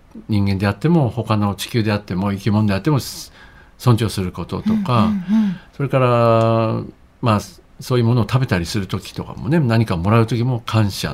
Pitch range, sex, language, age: 95-135 Hz, male, Japanese, 60-79